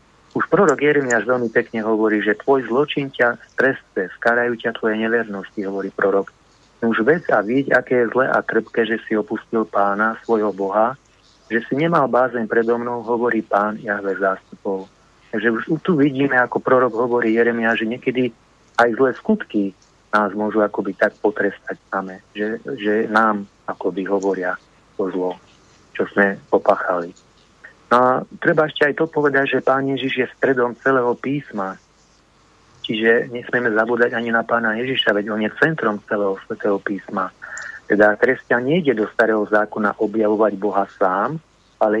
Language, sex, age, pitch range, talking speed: Slovak, male, 40-59, 105-130 Hz, 155 wpm